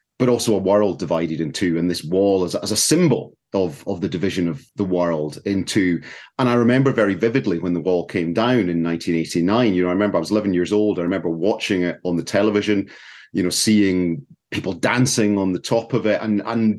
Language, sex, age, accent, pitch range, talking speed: English, male, 30-49, British, 90-115 Hz, 220 wpm